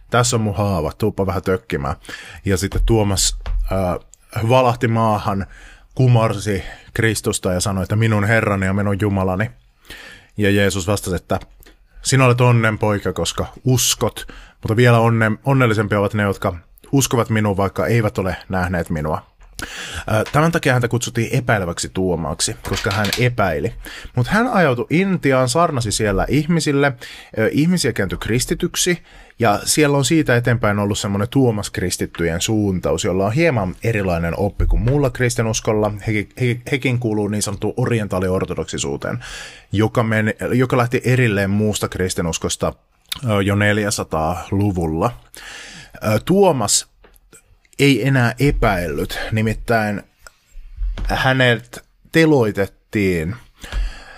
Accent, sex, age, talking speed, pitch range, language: native, male, 30-49, 120 wpm, 100-125 Hz, Finnish